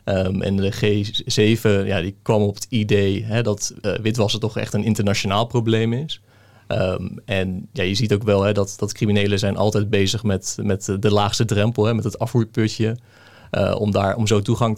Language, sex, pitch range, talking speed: Dutch, male, 100-110 Hz, 205 wpm